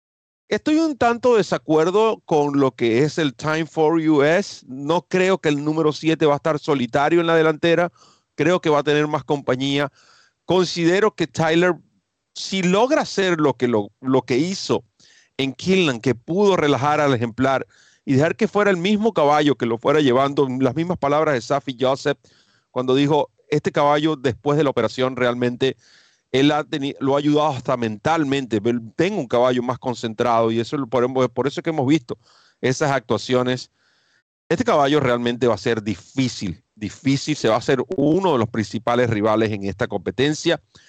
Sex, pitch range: male, 120-160 Hz